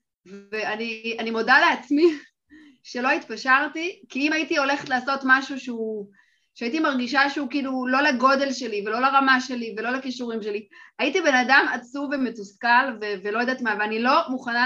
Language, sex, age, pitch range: Hebrew, female, 30-49, 225-295 Hz